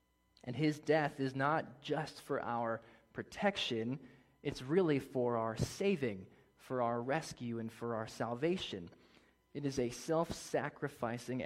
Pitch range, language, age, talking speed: 115-140 Hz, English, 20-39, 130 wpm